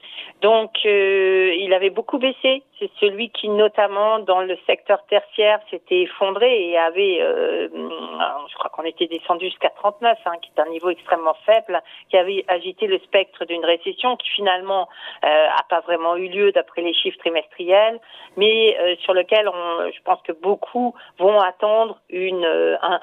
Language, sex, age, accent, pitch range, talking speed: French, female, 40-59, French, 185-240 Hz, 170 wpm